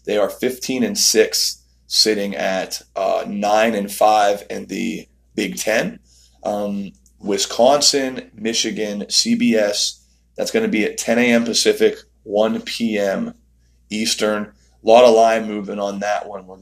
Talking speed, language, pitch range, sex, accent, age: 140 wpm, English, 105-130 Hz, male, American, 30-49